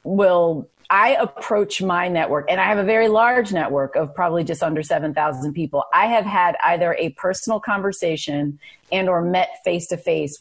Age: 30-49